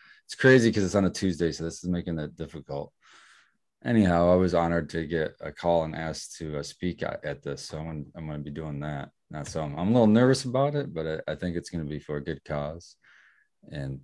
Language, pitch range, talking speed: English, 75-90 Hz, 245 wpm